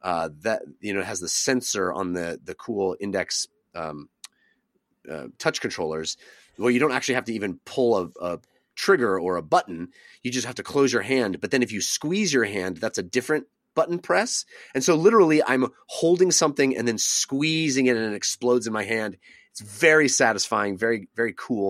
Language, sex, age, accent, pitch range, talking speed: English, male, 30-49, American, 120-160 Hz, 200 wpm